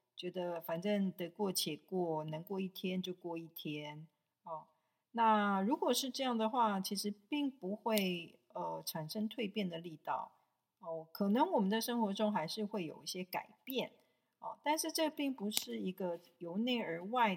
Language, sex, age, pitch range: Chinese, female, 40-59, 170-220 Hz